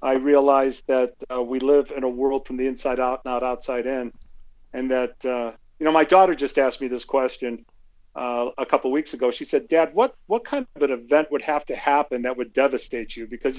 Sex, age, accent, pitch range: male, 50-69, American, 125-155 Hz